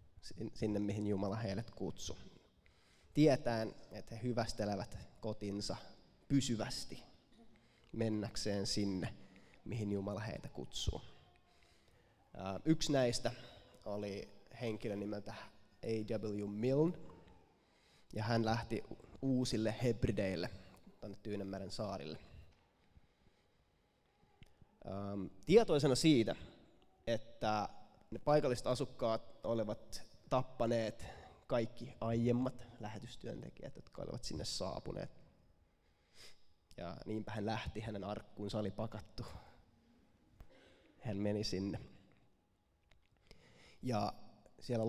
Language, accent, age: Finnish, native, 20-39